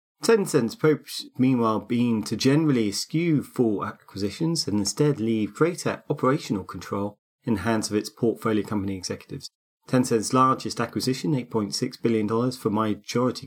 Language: English